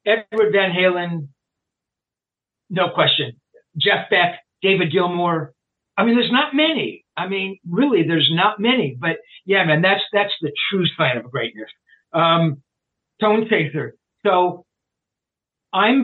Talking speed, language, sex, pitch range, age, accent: 130 wpm, English, male, 160-210 Hz, 50-69, American